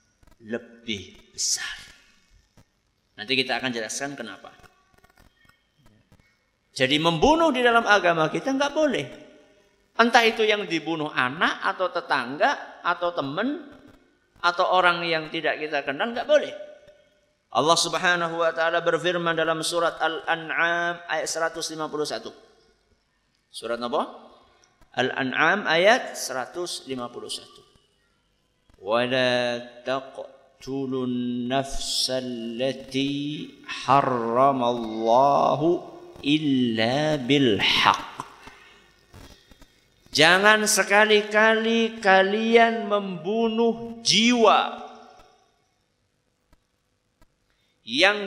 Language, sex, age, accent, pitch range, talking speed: Indonesian, male, 50-69, native, 130-215 Hz, 75 wpm